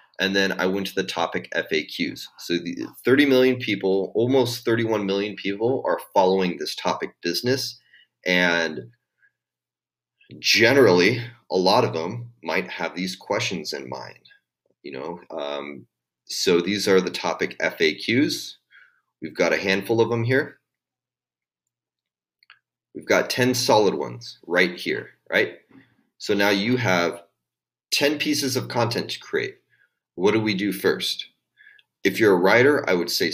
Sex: male